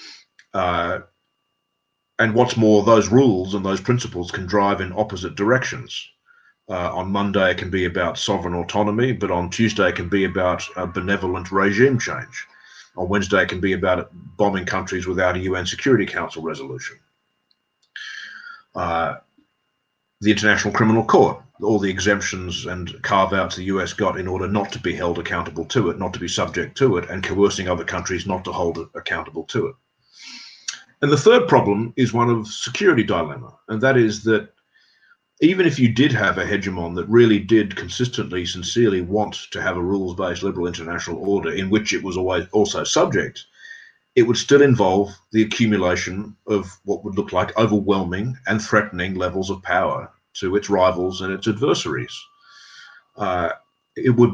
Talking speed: 170 wpm